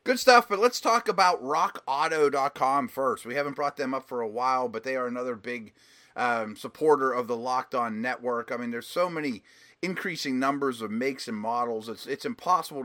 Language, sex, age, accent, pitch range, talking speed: English, male, 30-49, American, 120-145 Hz, 195 wpm